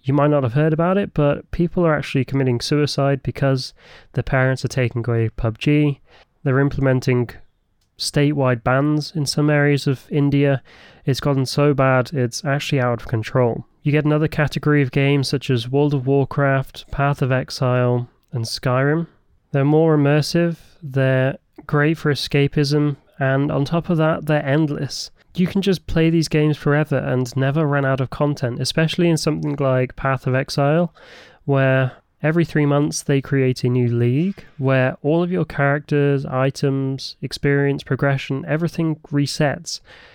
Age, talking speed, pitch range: 20-39, 160 wpm, 130-155 Hz